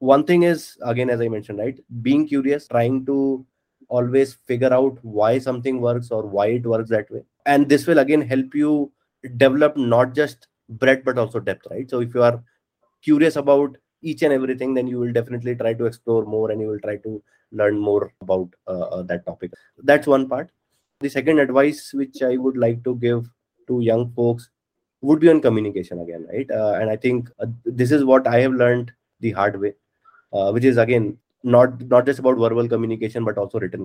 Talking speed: 200 wpm